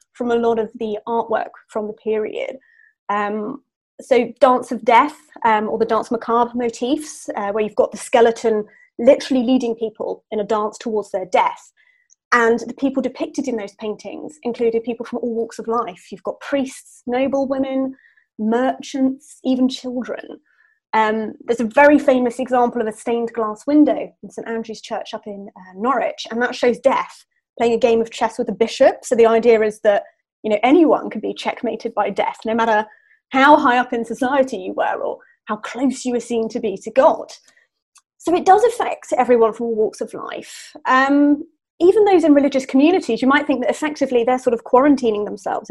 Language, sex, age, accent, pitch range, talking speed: English, female, 30-49, British, 225-285 Hz, 190 wpm